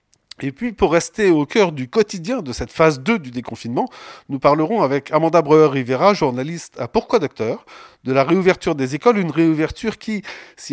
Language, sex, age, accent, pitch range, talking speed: French, male, 40-59, French, 145-195 Hz, 180 wpm